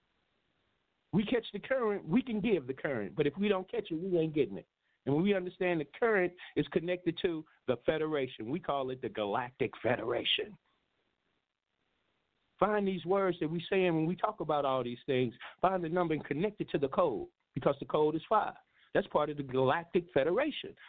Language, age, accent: English, 50-69, American